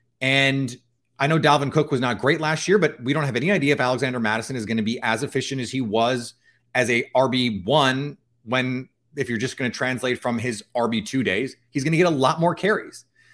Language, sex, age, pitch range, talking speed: English, male, 30-49, 120-155 Hz, 235 wpm